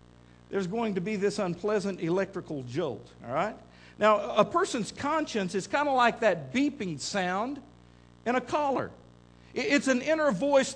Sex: male